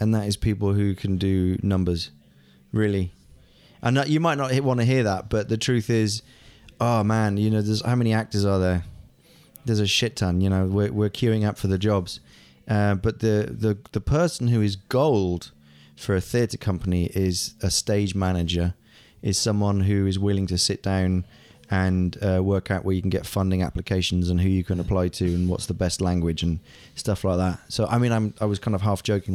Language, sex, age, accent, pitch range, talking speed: English, male, 20-39, British, 95-115 Hz, 215 wpm